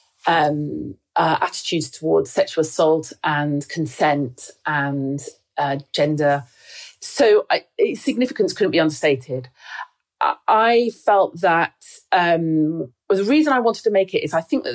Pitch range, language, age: 160-235 Hz, English, 40-59